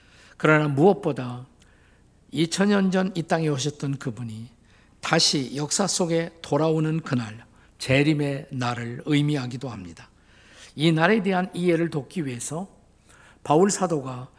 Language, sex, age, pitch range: Korean, male, 50-69, 130-170 Hz